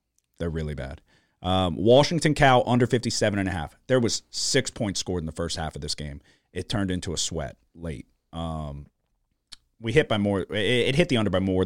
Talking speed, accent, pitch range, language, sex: 210 wpm, American, 80-110 Hz, English, male